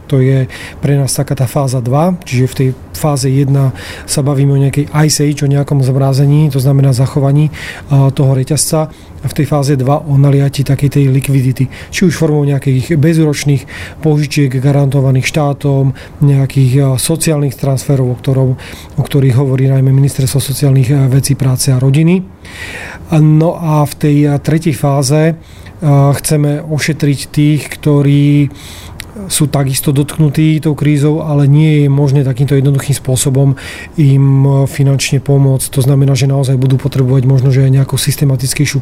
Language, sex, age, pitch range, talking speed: Slovak, male, 30-49, 135-150 Hz, 145 wpm